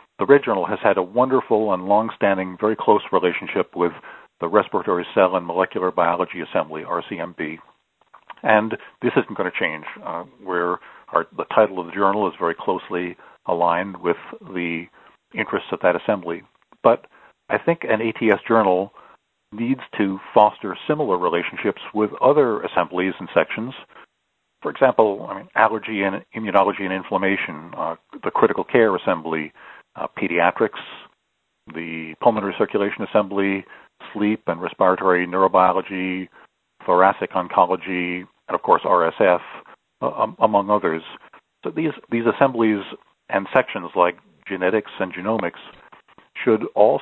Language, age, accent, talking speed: English, 40-59, American, 135 wpm